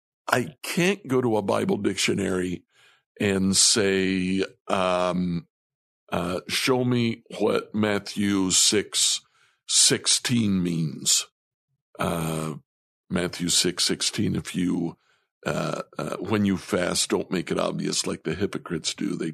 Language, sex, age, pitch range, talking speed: English, male, 60-79, 95-125 Hz, 120 wpm